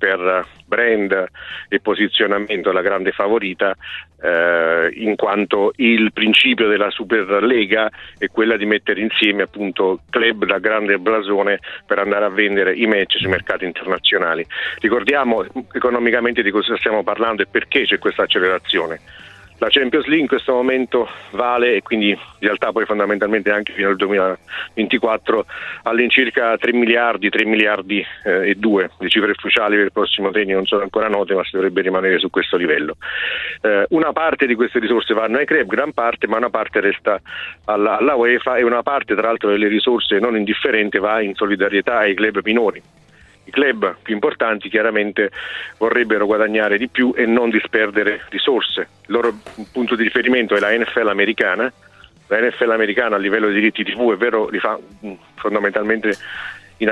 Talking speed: 165 wpm